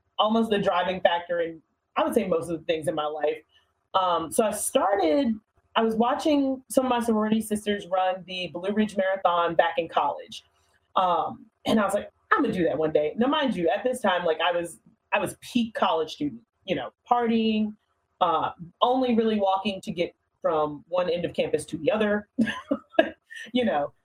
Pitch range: 175-240 Hz